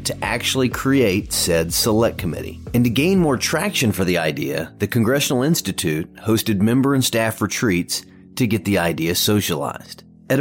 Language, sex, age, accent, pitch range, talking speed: English, male, 40-59, American, 100-130 Hz, 160 wpm